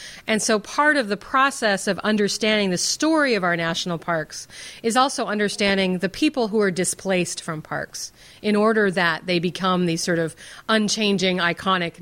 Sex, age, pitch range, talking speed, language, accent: female, 40-59, 180-225 Hz, 170 wpm, English, American